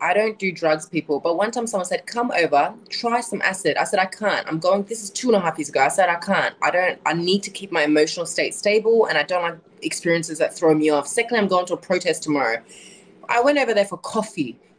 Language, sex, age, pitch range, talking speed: English, female, 20-39, 180-245 Hz, 265 wpm